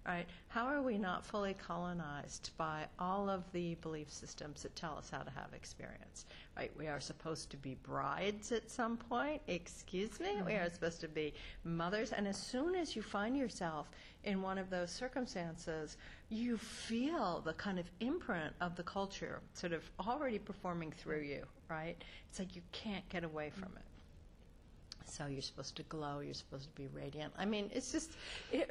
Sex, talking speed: female, 185 wpm